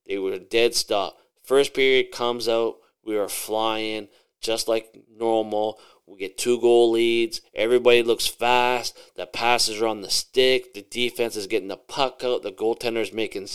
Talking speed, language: 175 wpm, English